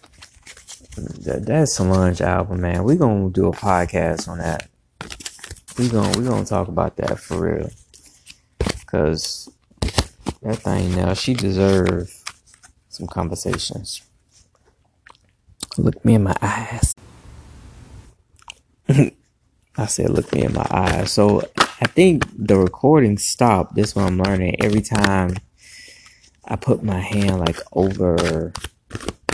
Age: 20-39